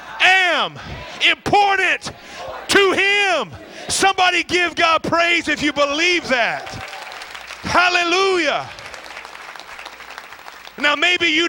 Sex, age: male, 30-49